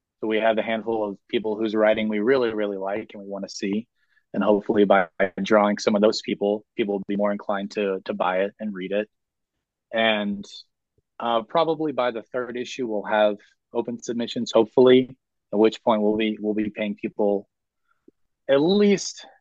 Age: 20-39